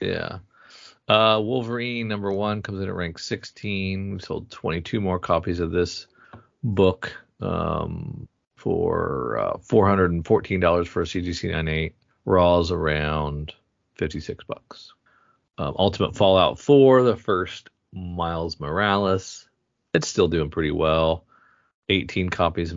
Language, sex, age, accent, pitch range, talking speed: English, male, 40-59, American, 85-105 Hz, 120 wpm